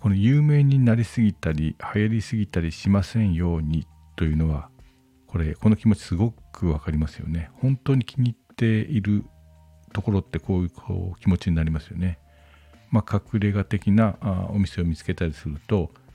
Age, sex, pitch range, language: 50-69, male, 80-105 Hz, Japanese